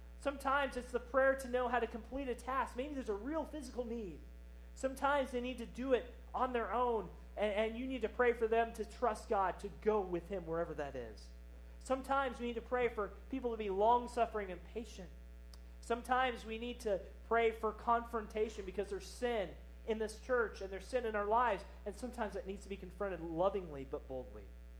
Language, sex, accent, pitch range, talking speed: English, male, American, 150-235 Hz, 205 wpm